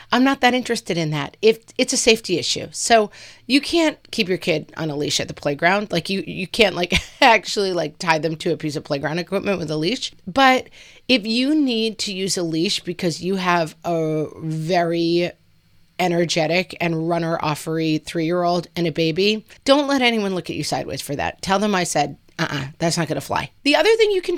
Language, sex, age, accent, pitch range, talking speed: English, female, 30-49, American, 155-215 Hz, 210 wpm